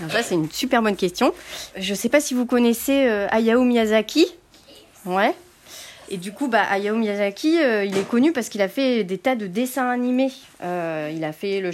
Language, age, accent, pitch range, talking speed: French, 30-49, French, 190-260 Hz, 210 wpm